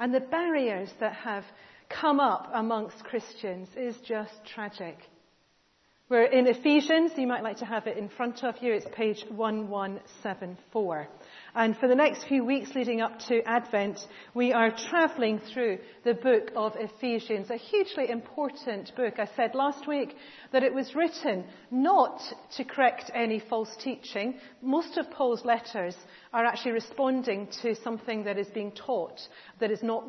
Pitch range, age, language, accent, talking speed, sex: 205-255 Hz, 40-59, English, British, 160 wpm, female